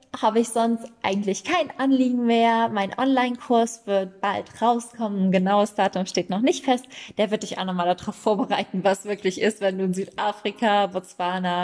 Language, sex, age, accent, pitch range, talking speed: German, female, 20-39, German, 185-210 Hz, 175 wpm